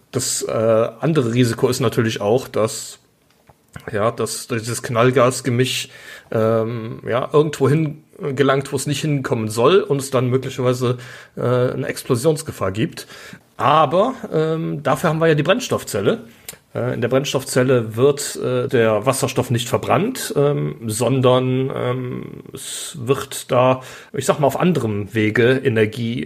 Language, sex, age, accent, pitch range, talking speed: German, male, 40-59, German, 115-140 Hz, 135 wpm